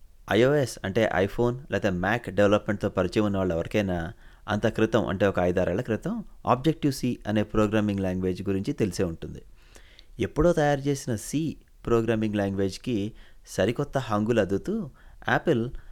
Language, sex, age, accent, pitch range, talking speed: English, male, 30-49, Indian, 95-120 Hz, 100 wpm